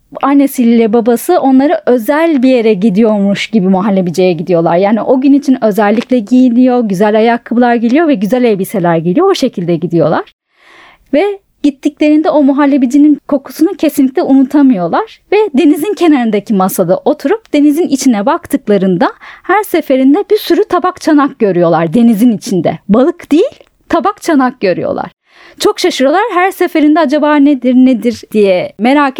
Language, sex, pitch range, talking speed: Turkish, female, 215-300 Hz, 130 wpm